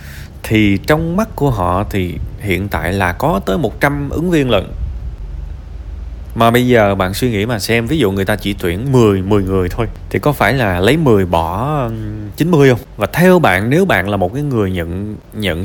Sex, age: male, 20-39